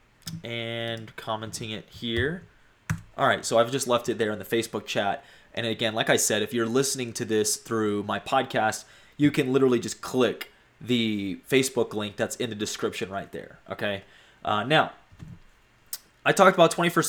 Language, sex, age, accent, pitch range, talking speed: English, male, 20-39, American, 110-130 Hz, 170 wpm